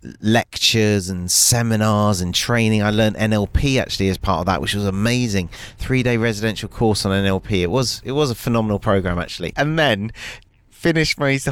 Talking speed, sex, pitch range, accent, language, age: 175 wpm, male, 95-120 Hz, British, English, 30-49